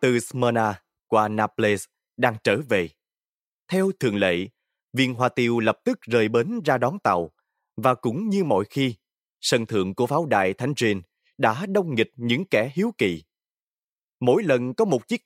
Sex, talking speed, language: male, 175 wpm, Vietnamese